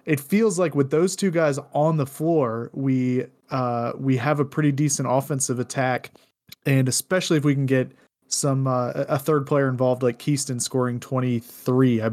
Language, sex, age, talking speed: English, male, 20-39, 180 wpm